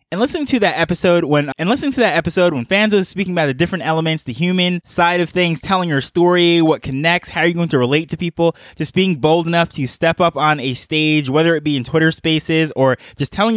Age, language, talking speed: 20-39, English, 250 wpm